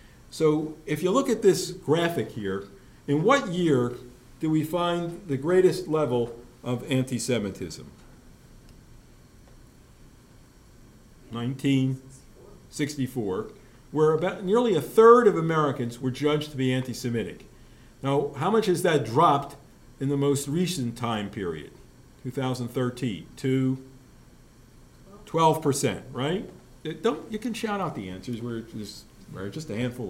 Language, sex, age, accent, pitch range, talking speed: English, male, 50-69, American, 125-175 Hz, 120 wpm